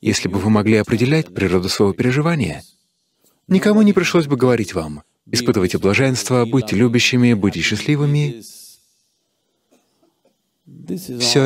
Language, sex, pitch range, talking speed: Russian, male, 105-150 Hz, 110 wpm